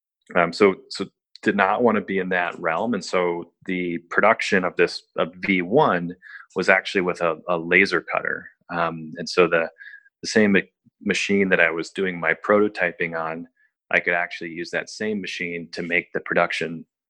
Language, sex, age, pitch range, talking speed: English, male, 30-49, 85-100 Hz, 185 wpm